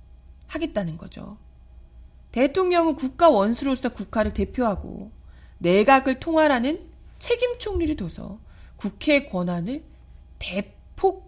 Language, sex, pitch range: Korean, female, 180-285 Hz